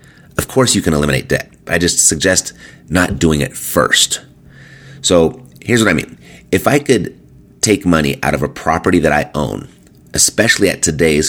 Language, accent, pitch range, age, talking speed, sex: English, American, 75-95 Hz, 30-49, 175 wpm, male